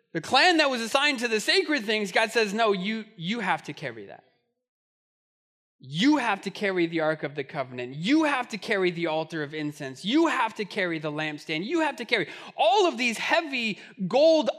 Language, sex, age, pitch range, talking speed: English, male, 20-39, 170-240 Hz, 205 wpm